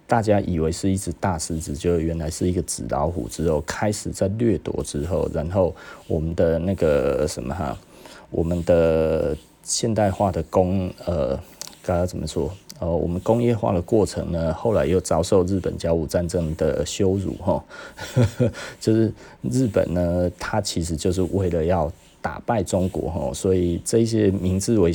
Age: 30-49